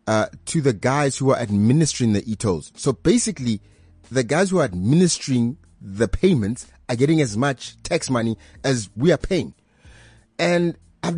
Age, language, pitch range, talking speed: 30-49, English, 110-160 Hz, 160 wpm